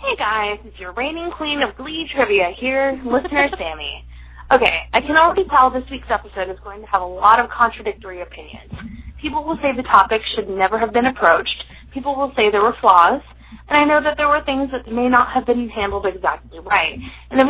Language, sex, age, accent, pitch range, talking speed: English, female, 20-39, American, 190-275 Hz, 215 wpm